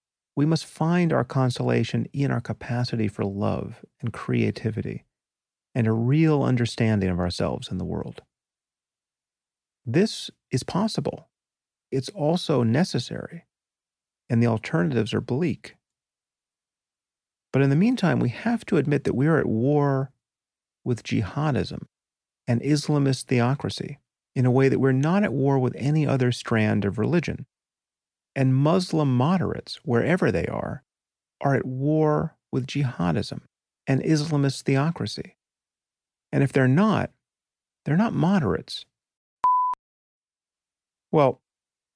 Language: English